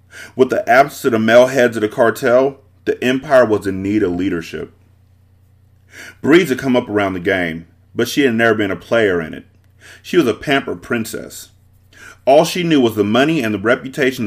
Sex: male